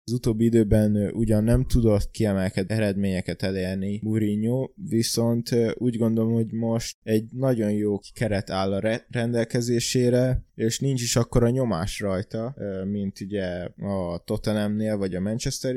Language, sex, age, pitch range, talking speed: Hungarian, male, 20-39, 100-115 Hz, 140 wpm